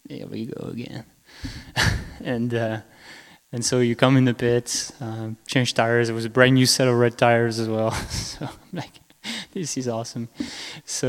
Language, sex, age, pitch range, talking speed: English, male, 20-39, 115-125 Hz, 185 wpm